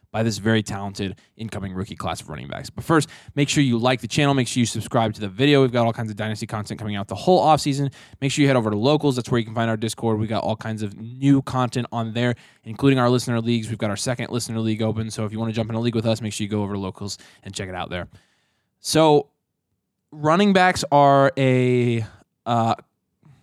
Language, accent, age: English, American, 20-39